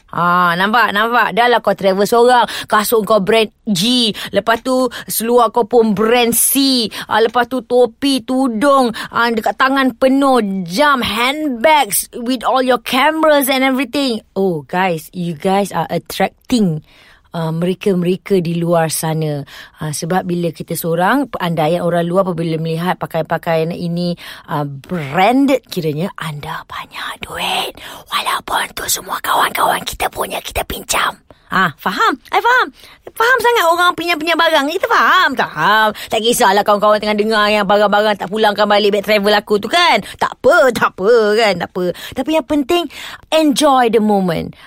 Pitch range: 185-255 Hz